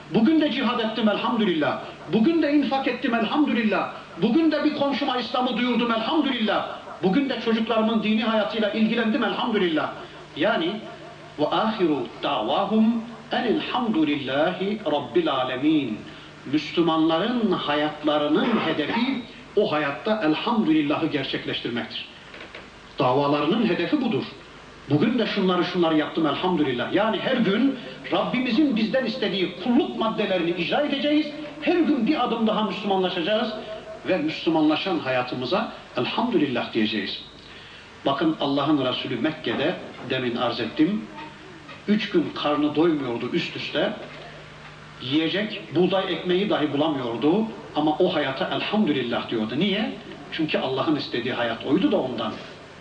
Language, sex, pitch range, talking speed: Turkish, male, 160-245 Hz, 110 wpm